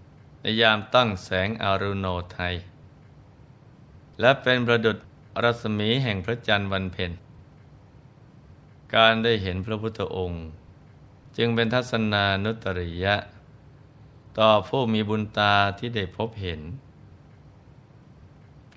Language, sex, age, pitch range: Thai, male, 20-39, 95-115 Hz